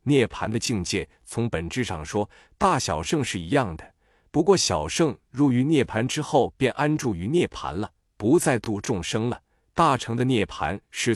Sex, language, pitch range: male, Chinese, 105-150 Hz